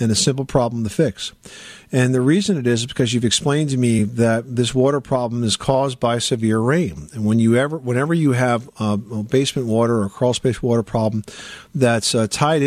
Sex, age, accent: male, 50-69, American